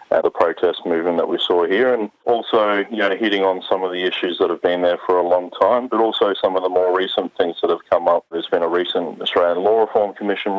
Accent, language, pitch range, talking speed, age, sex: Australian, English, 90-95 Hz, 245 wpm, 30-49, male